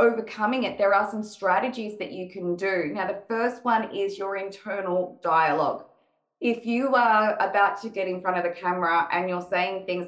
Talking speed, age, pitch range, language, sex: 195 wpm, 20-39, 175-210 Hz, English, female